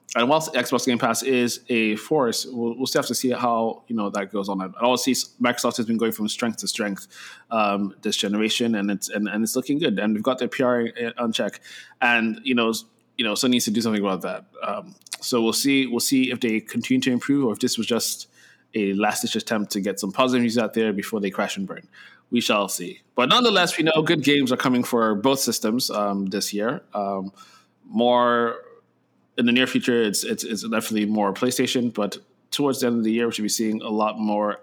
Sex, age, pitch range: male, 20-39, 105-125 Hz